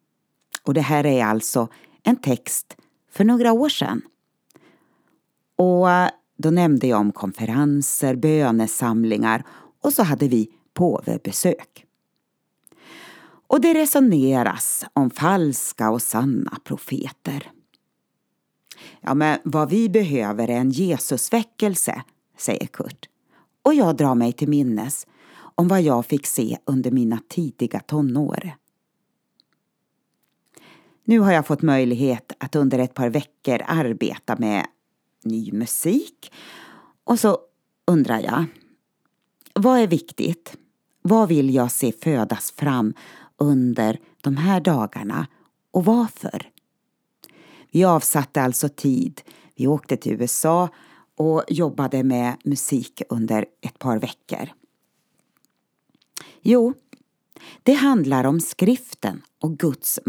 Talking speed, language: 110 wpm, Swedish